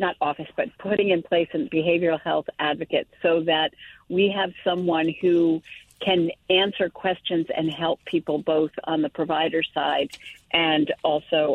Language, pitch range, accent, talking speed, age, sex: English, 160-185 Hz, American, 150 wpm, 50-69, female